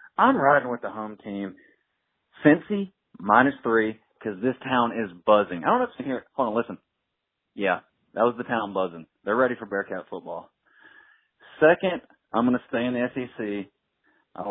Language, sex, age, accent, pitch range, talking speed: English, male, 30-49, American, 95-120 Hz, 180 wpm